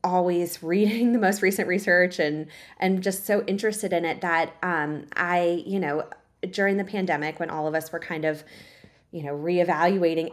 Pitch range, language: 175-215 Hz, English